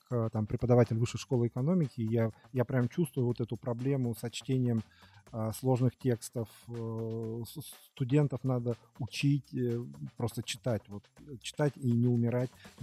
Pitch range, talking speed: 110-140 Hz, 130 wpm